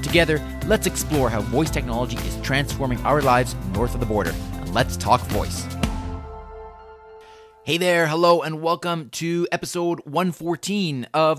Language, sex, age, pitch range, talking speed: English, male, 30-49, 110-145 Hz, 135 wpm